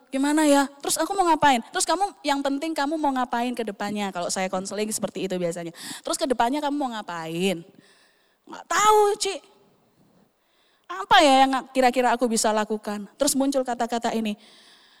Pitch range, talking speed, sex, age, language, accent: 225-325 Hz, 165 wpm, female, 20-39, English, Indonesian